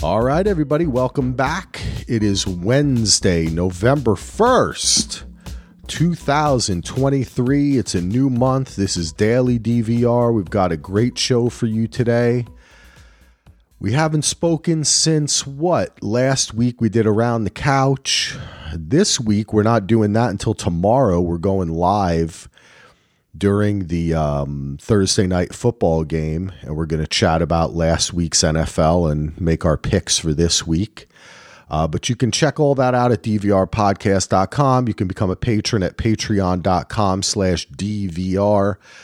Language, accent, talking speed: English, American, 140 wpm